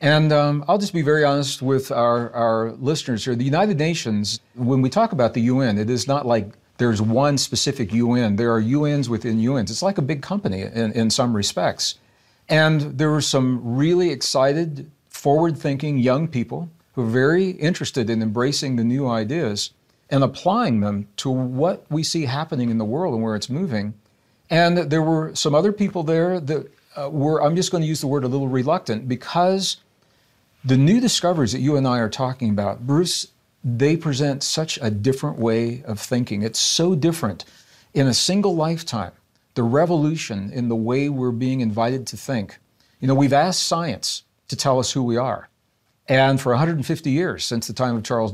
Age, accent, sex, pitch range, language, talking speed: 50-69, American, male, 115-150 Hz, English, 190 wpm